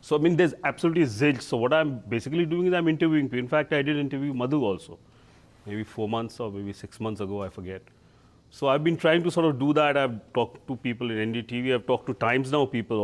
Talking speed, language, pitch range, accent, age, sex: 245 wpm, English, 115-155 Hz, Indian, 30-49, male